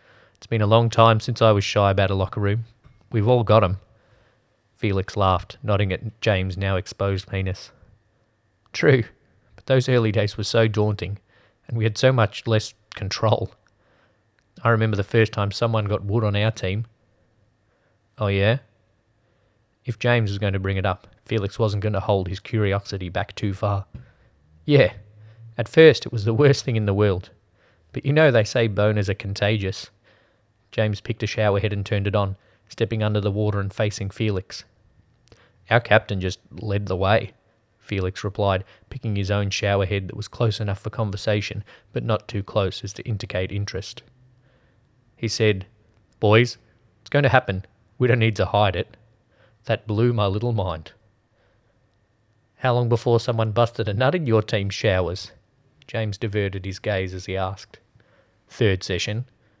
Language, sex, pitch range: English, male, 100-115 Hz